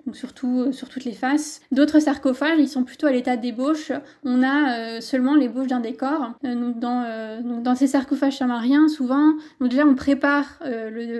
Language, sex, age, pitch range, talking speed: French, female, 20-39, 245-280 Hz, 210 wpm